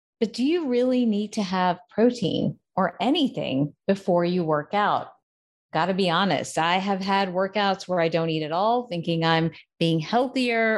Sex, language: female, English